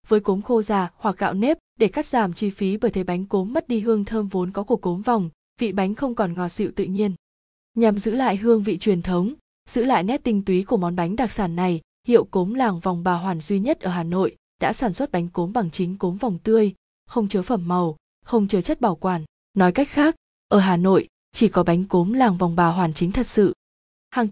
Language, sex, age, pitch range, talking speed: Vietnamese, female, 20-39, 185-230 Hz, 245 wpm